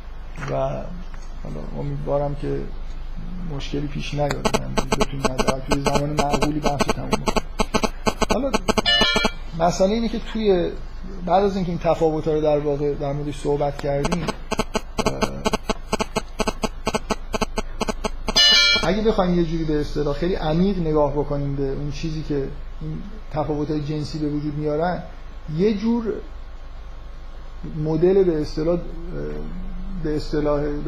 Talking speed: 120 wpm